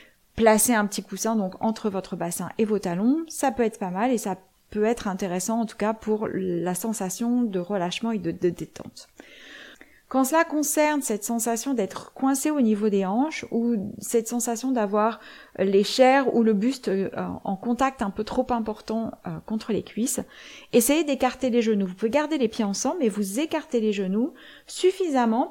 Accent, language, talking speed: French, French, 185 wpm